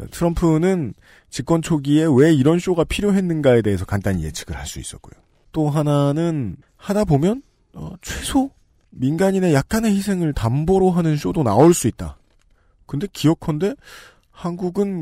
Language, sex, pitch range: Korean, male, 105-165 Hz